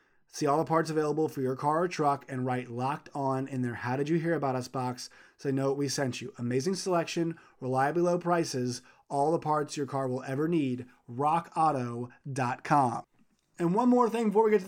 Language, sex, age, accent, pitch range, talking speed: English, male, 30-49, American, 145-185 Hz, 215 wpm